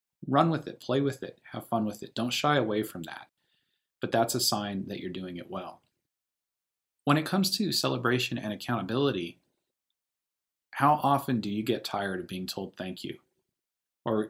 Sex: male